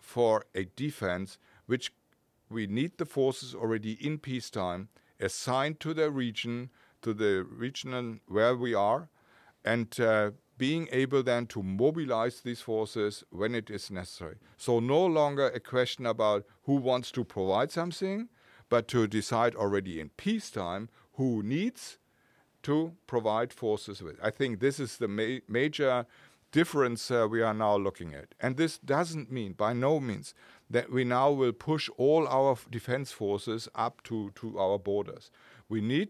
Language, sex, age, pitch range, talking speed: English, male, 50-69, 105-140 Hz, 155 wpm